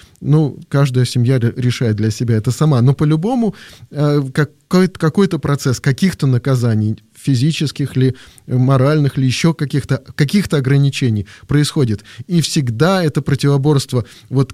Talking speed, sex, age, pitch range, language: 115 wpm, male, 20-39, 125-155 Hz, Russian